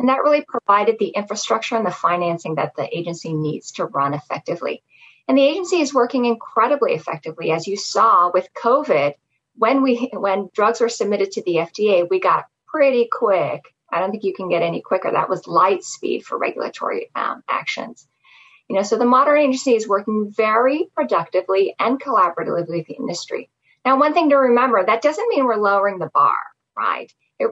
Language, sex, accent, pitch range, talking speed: English, female, American, 190-265 Hz, 190 wpm